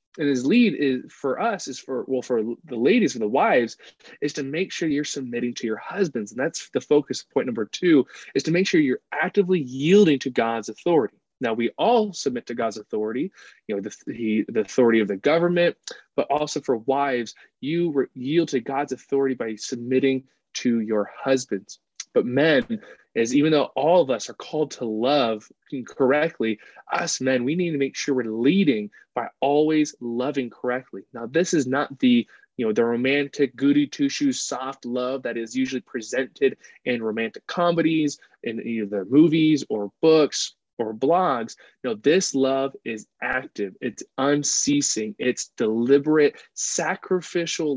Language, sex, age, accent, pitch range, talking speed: English, male, 20-39, American, 120-160 Hz, 170 wpm